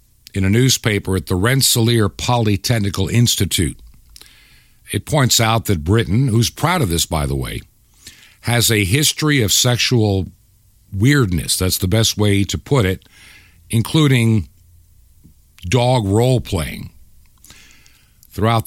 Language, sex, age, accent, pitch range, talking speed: English, male, 50-69, American, 95-125 Hz, 120 wpm